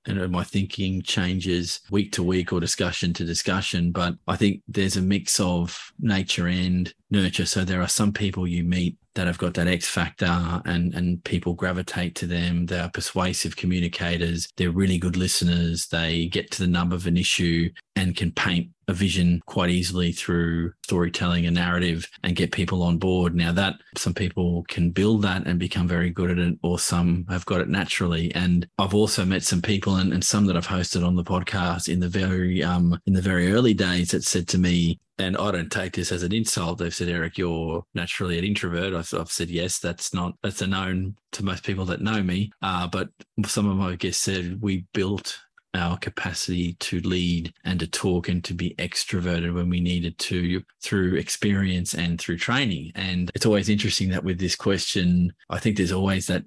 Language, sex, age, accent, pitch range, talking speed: English, male, 20-39, Australian, 85-95 Hz, 200 wpm